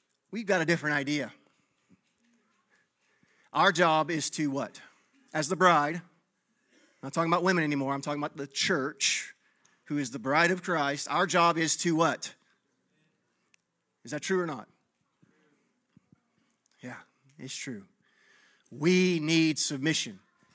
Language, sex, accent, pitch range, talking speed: English, male, American, 150-190 Hz, 135 wpm